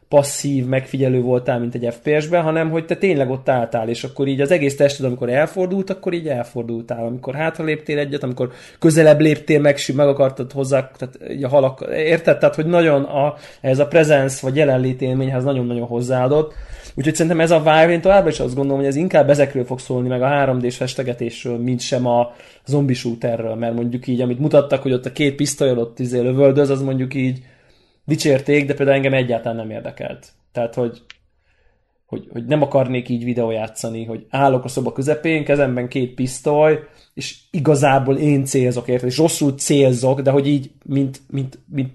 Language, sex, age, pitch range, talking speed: Hungarian, male, 20-39, 125-145 Hz, 180 wpm